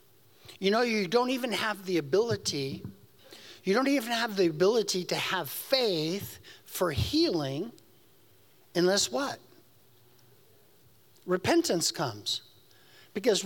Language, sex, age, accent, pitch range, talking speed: English, male, 50-69, American, 170-235 Hz, 105 wpm